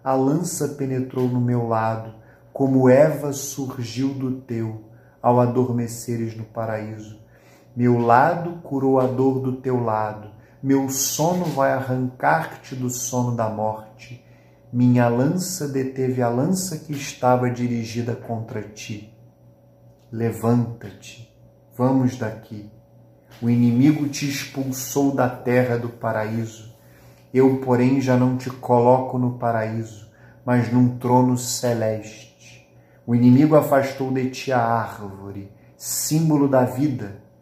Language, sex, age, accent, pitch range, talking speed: Portuguese, male, 40-59, Brazilian, 115-135 Hz, 120 wpm